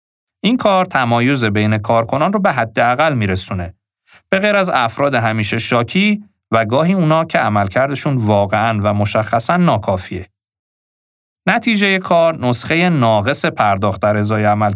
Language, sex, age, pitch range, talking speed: Persian, male, 40-59, 105-160 Hz, 130 wpm